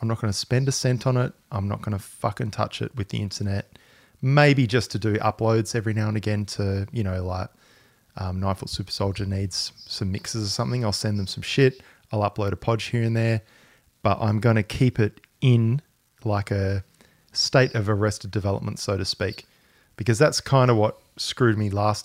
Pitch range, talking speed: 100-125 Hz, 205 wpm